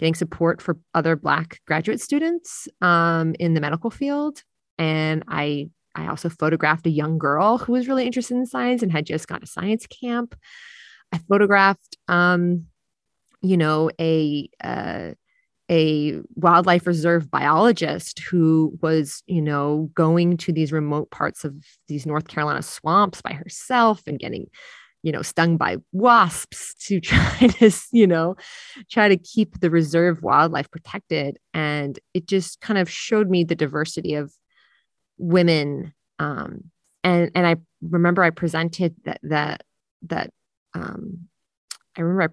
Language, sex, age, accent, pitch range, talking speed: English, female, 30-49, American, 155-190 Hz, 145 wpm